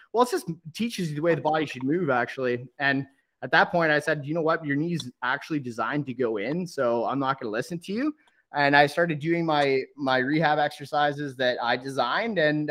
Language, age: English, 20-39